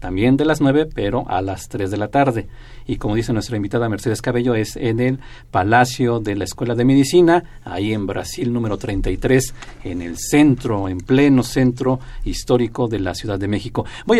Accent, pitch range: Mexican, 105-135 Hz